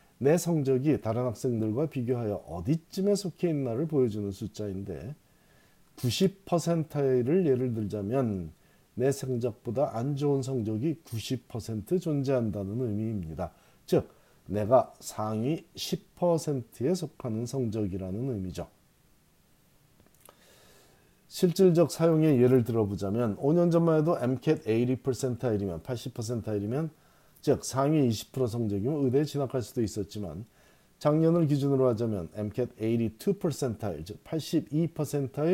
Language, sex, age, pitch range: Korean, male, 40-59, 105-150 Hz